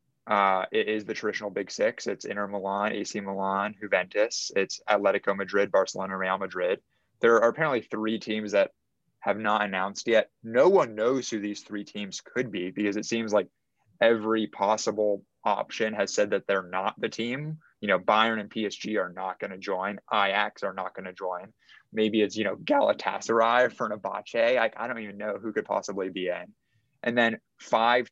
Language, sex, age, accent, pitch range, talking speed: English, male, 20-39, American, 95-110 Hz, 185 wpm